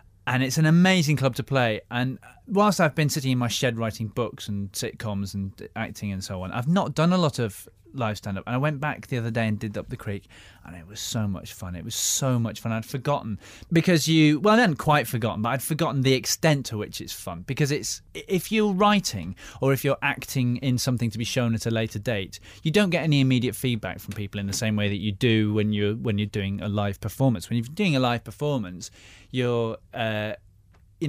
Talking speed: 235 wpm